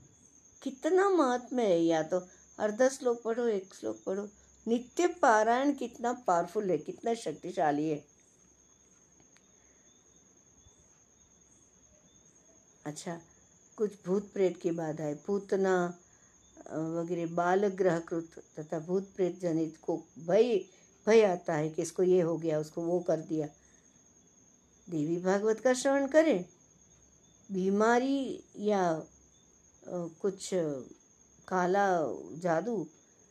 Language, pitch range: Hindi, 165-230 Hz